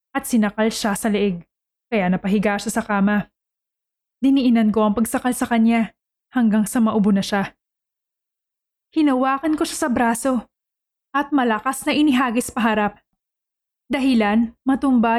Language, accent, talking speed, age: Filipino, native, 125 wpm, 20-39